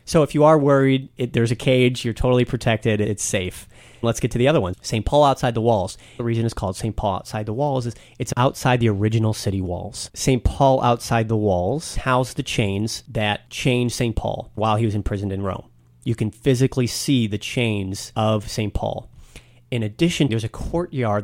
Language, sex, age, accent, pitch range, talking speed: English, male, 30-49, American, 110-125 Hz, 205 wpm